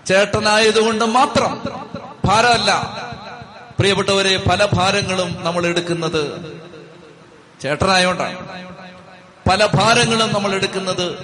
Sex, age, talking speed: male, 30-49, 70 wpm